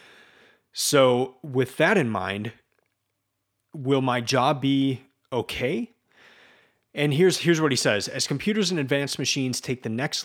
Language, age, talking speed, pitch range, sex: English, 30-49, 140 wpm, 115-140 Hz, male